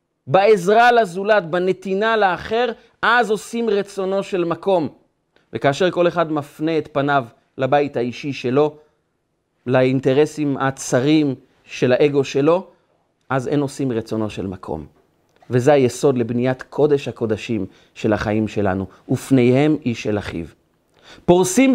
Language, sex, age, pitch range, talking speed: Hebrew, male, 30-49, 130-205 Hz, 115 wpm